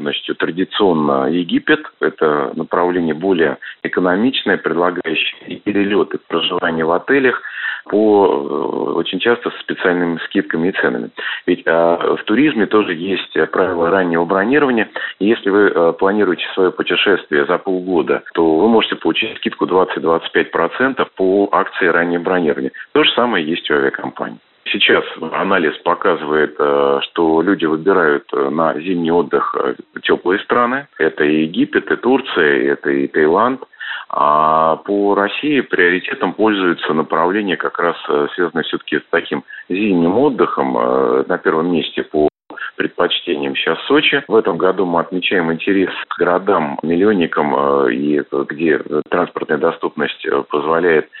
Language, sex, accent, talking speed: Russian, male, native, 130 wpm